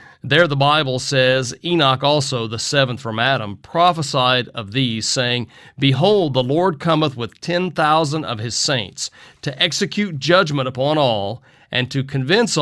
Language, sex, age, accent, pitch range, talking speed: English, male, 40-59, American, 120-150 Hz, 150 wpm